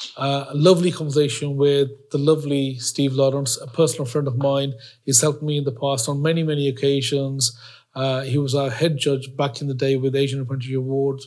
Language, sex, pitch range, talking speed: English, male, 135-150 Hz, 200 wpm